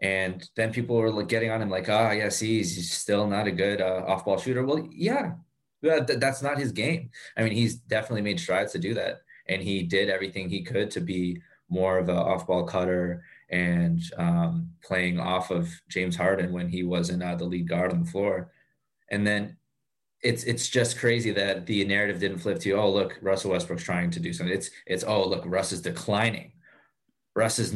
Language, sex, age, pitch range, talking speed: English, male, 20-39, 90-120 Hz, 205 wpm